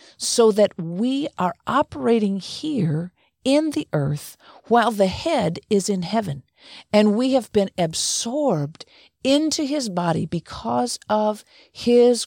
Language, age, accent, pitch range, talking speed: English, 50-69, American, 175-235 Hz, 125 wpm